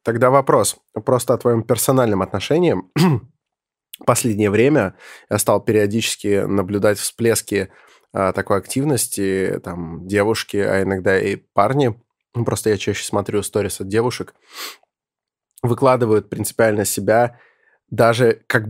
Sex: male